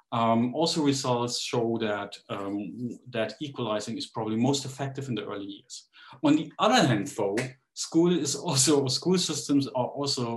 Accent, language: German, English